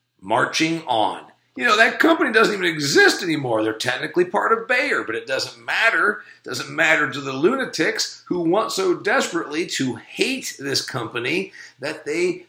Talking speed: 170 wpm